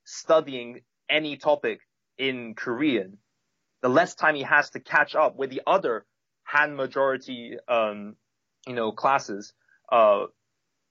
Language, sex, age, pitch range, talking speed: English, male, 20-39, 120-140 Hz, 120 wpm